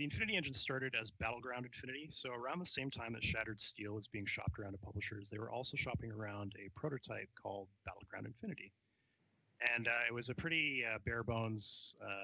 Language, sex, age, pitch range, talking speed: English, male, 30-49, 105-130 Hz, 190 wpm